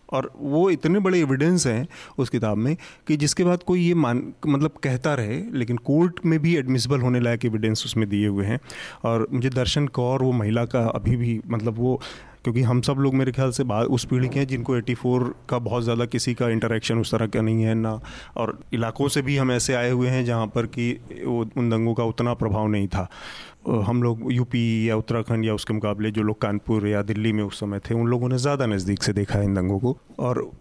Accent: native